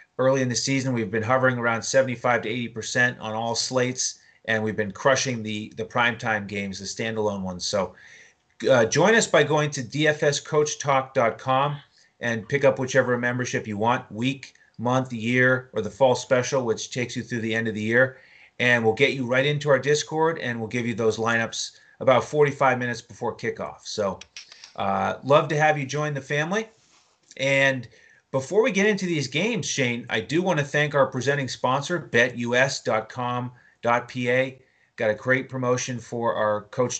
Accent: American